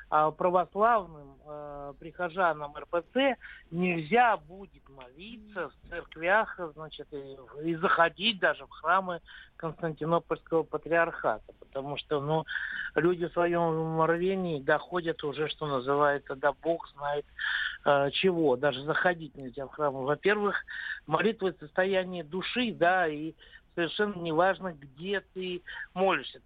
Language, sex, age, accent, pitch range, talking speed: Russian, male, 60-79, native, 145-190 Hz, 115 wpm